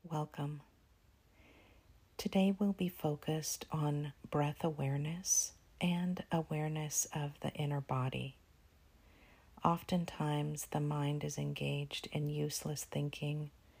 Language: English